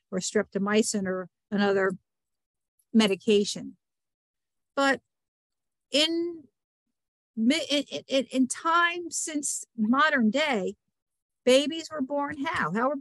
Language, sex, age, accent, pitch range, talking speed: English, female, 50-69, American, 210-275 Hz, 85 wpm